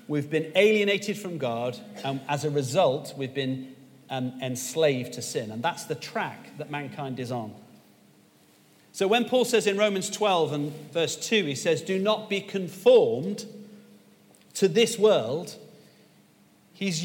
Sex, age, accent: male, 40-59, British